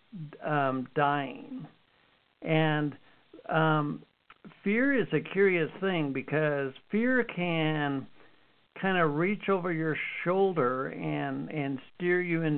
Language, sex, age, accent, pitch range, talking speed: English, male, 60-79, American, 150-175 Hz, 110 wpm